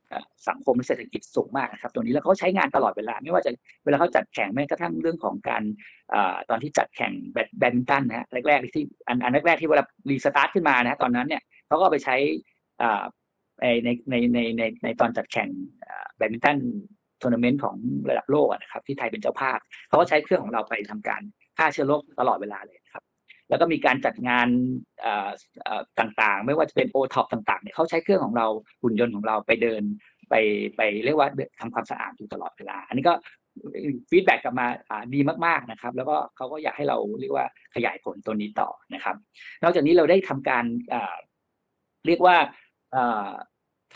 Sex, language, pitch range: male, Thai, 115-165 Hz